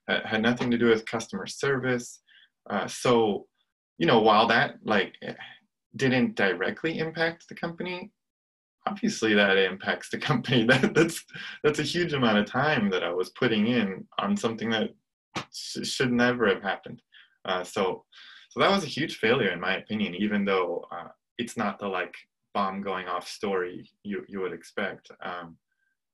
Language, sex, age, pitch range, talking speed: English, male, 20-39, 105-145 Hz, 165 wpm